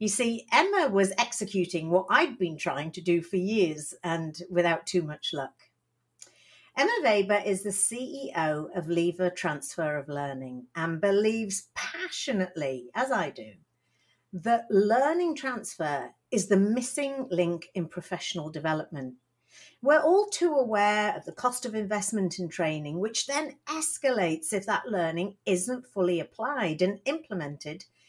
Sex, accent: female, British